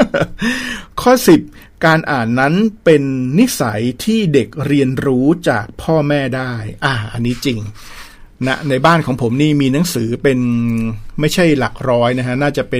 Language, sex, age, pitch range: Thai, male, 60-79, 120-150 Hz